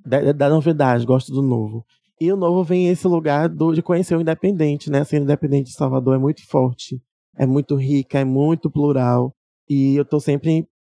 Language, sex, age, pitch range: Portuguese, male, 20-39, 130-150 Hz